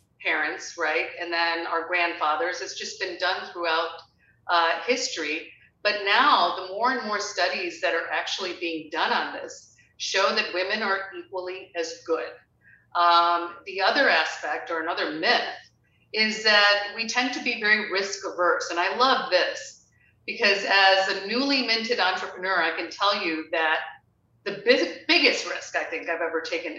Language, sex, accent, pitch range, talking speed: English, female, American, 170-205 Hz, 160 wpm